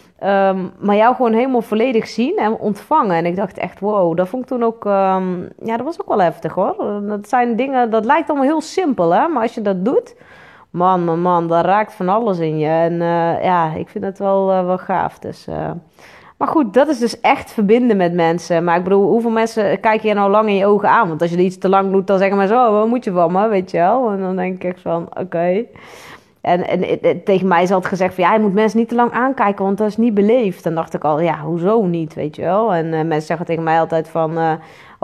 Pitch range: 165-215 Hz